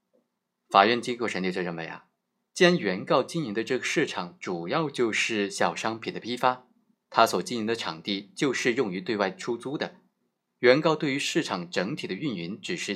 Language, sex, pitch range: Chinese, male, 100-140 Hz